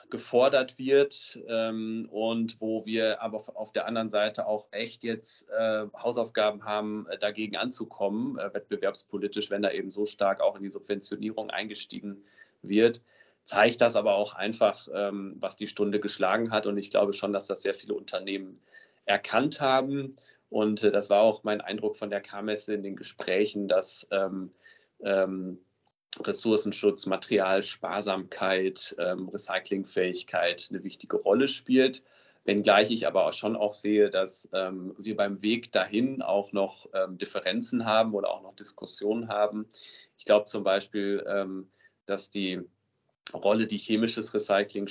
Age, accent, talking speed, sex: 30-49, German, 150 wpm, male